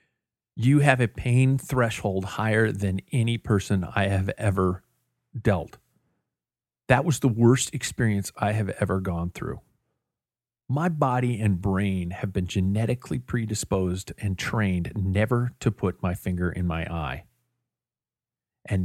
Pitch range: 95-125 Hz